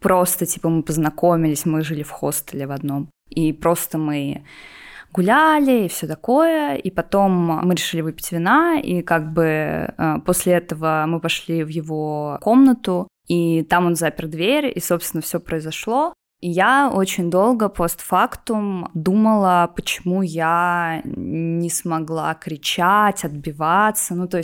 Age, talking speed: 20-39, 140 wpm